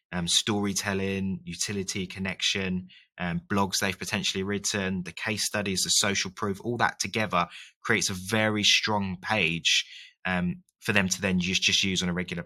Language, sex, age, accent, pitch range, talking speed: English, male, 20-39, British, 90-100 Hz, 165 wpm